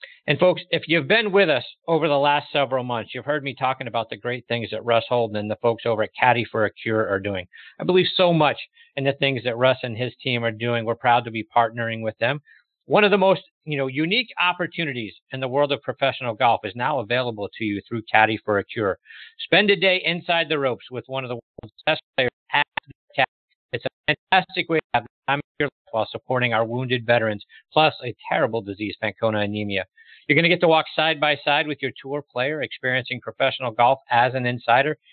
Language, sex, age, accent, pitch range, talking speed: English, male, 50-69, American, 120-165 Hz, 225 wpm